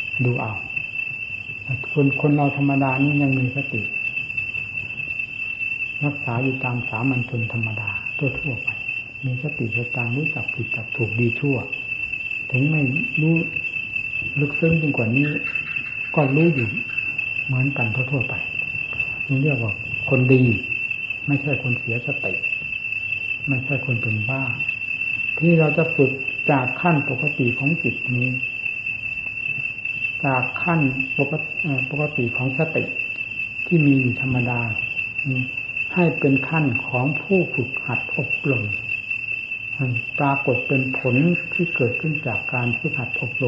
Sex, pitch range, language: male, 120-140 Hz, Thai